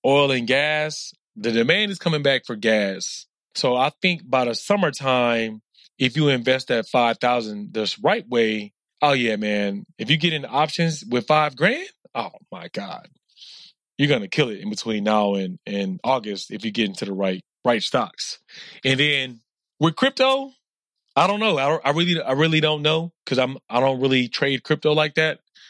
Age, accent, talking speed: 20-39, American, 185 wpm